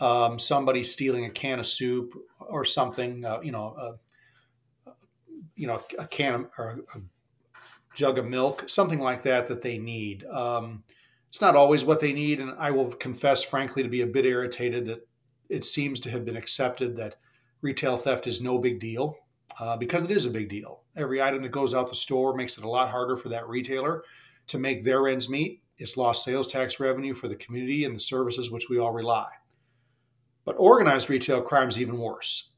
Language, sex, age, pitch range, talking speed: English, male, 30-49, 120-140 Hz, 200 wpm